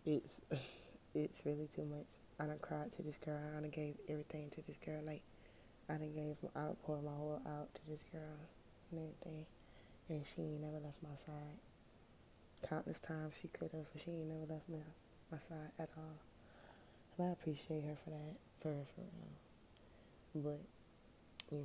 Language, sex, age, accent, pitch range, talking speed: English, female, 20-39, American, 140-155 Hz, 175 wpm